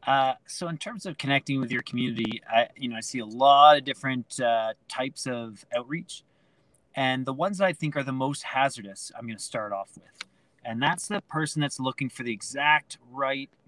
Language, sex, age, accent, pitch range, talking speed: English, male, 30-49, American, 125-165 Hz, 205 wpm